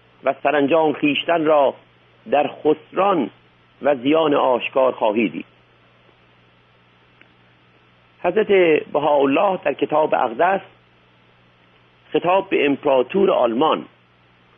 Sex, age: male, 50-69